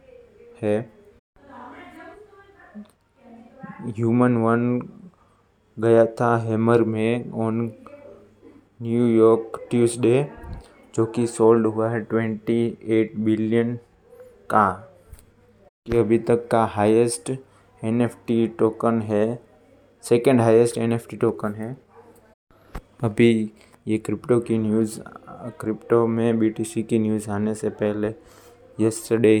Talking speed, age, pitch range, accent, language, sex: 90 wpm, 20-39, 110-120 Hz, native, Hindi, male